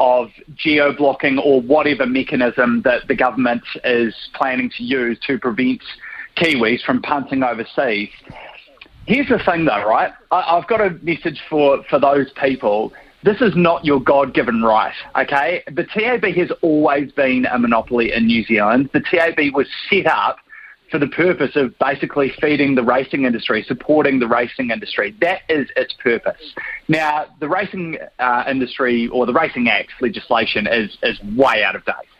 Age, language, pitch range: 30-49, English, 125-160 Hz